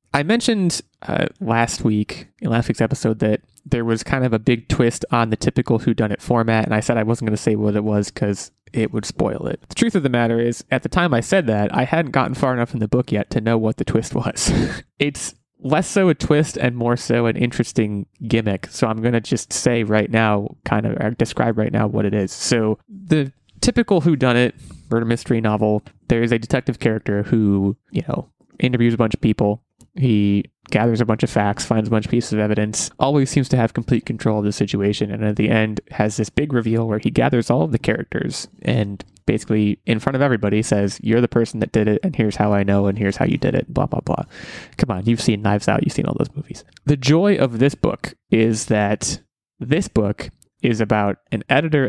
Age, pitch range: 20-39, 105-130 Hz